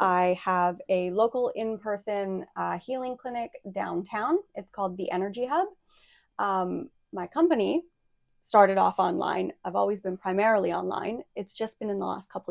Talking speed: 150 wpm